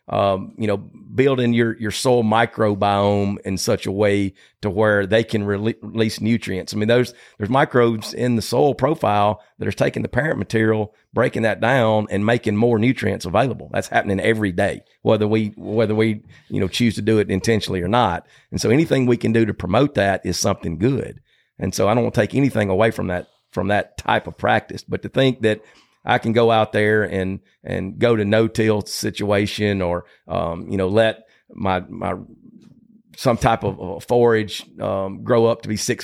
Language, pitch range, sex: English, 95-110 Hz, male